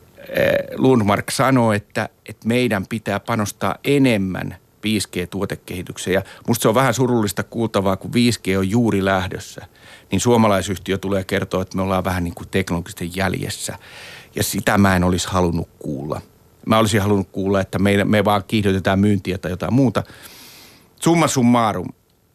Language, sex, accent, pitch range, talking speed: Finnish, male, native, 95-125 Hz, 145 wpm